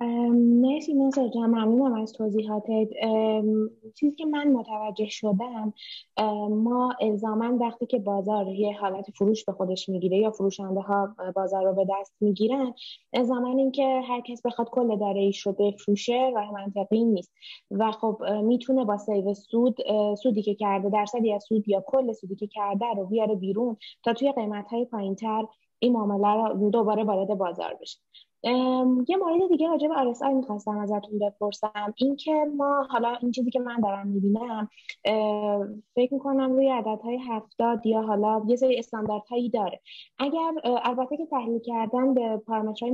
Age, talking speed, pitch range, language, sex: 20-39, 160 wpm, 205-245 Hz, Persian, female